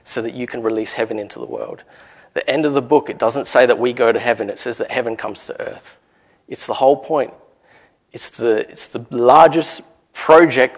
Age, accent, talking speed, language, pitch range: 30-49, Australian, 215 wpm, English, 115-145 Hz